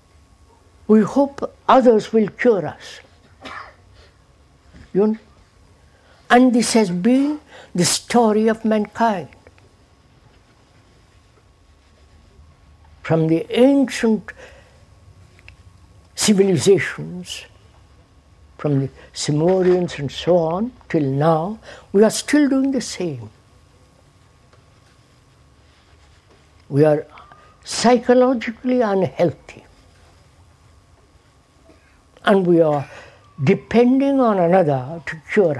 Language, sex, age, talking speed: English, female, 60-79, 80 wpm